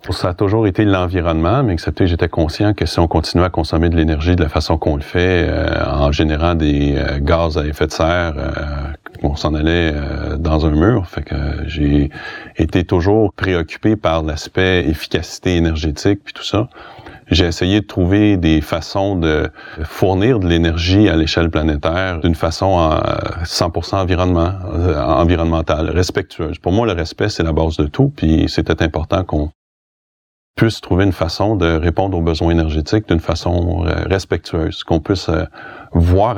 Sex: male